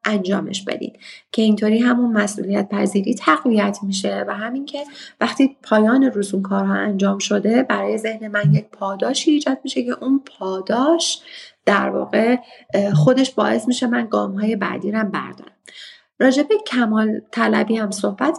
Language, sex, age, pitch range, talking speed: Persian, female, 30-49, 205-245 Hz, 140 wpm